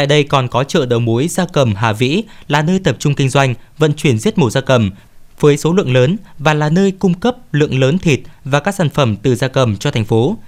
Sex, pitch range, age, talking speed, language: male, 120-165 Hz, 20-39, 260 wpm, Vietnamese